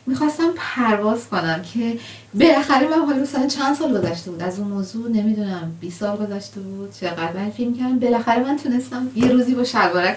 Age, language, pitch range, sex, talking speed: 30-49, Persian, 170-215 Hz, female, 185 wpm